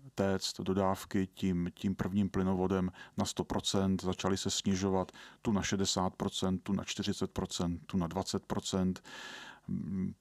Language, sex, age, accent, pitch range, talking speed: Czech, male, 40-59, native, 90-100 Hz, 120 wpm